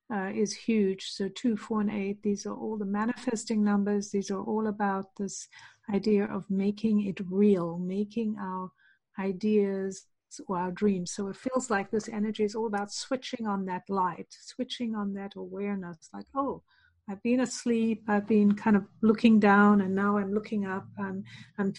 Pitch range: 190-215 Hz